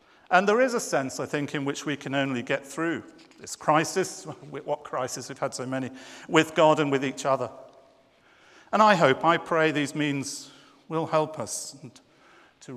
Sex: male